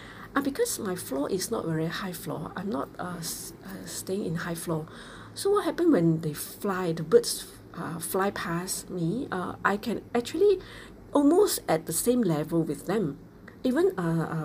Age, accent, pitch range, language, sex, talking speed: 40-59, Malaysian, 165-230 Hz, English, female, 185 wpm